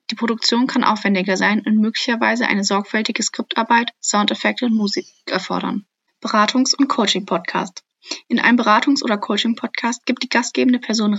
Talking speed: 140 wpm